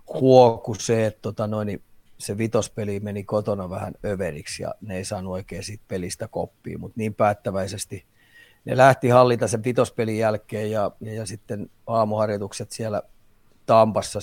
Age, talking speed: 30-49, 145 wpm